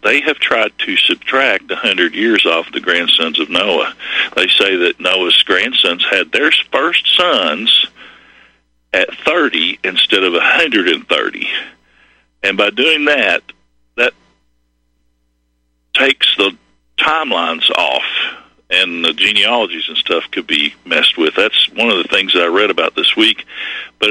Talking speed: 135 wpm